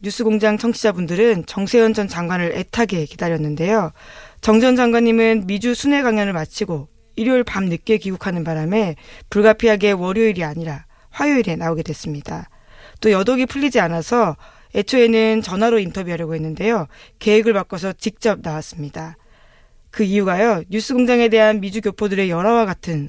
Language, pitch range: Korean, 170-225 Hz